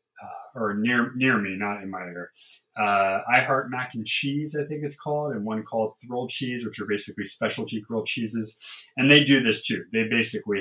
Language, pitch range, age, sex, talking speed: English, 105-165 Hz, 30-49, male, 205 wpm